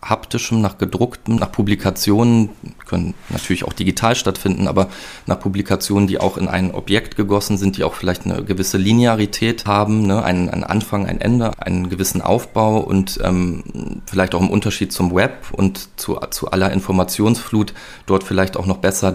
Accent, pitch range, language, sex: German, 95-105 Hz, German, male